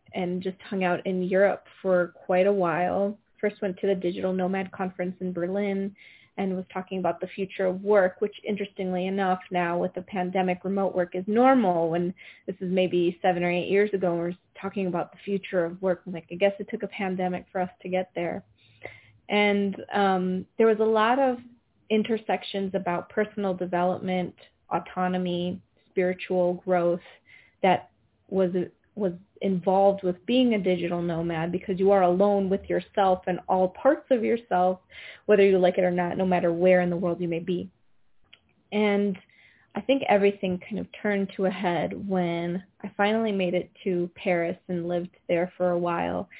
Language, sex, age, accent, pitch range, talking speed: English, female, 20-39, American, 180-200 Hz, 180 wpm